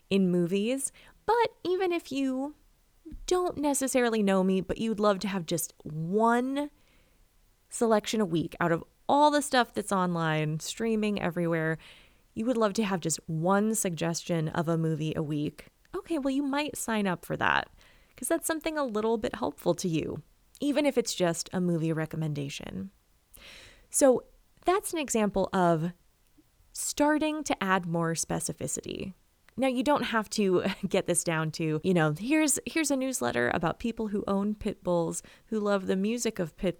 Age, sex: 20-39, female